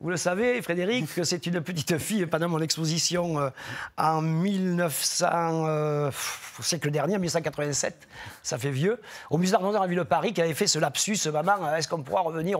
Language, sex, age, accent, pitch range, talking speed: French, male, 40-59, French, 150-200 Hz, 200 wpm